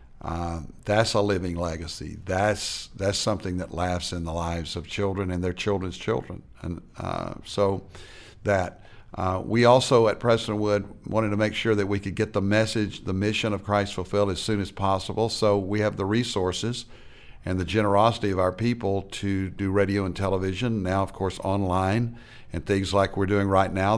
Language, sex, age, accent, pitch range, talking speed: English, male, 60-79, American, 90-110 Hz, 185 wpm